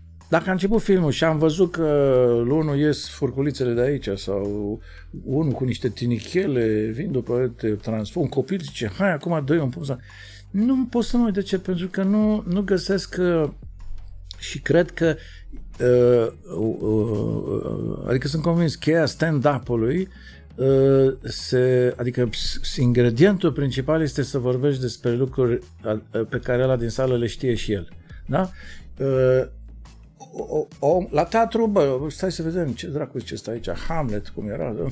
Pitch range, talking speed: 110-170 Hz, 160 wpm